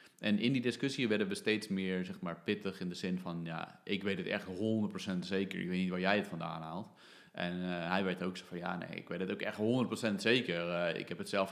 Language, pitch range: Dutch, 95-110 Hz